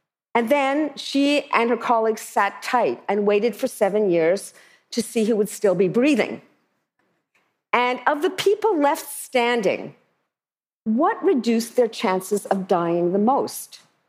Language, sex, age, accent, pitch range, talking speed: English, female, 50-69, American, 205-250 Hz, 145 wpm